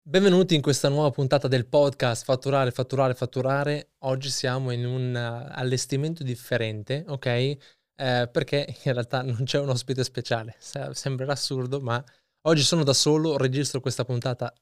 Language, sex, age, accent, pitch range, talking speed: Italian, male, 20-39, native, 120-140 Hz, 145 wpm